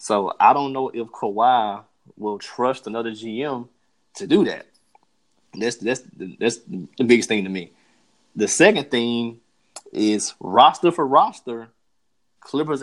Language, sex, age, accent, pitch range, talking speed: English, male, 20-39, American, 105-120 Hz, 135 wpm